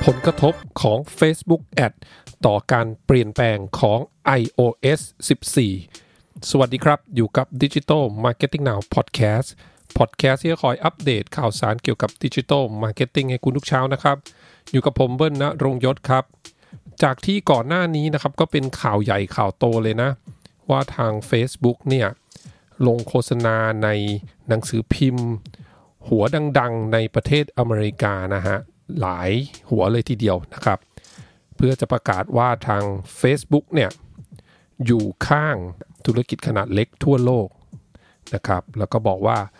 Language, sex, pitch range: English, male, 110-140 Hz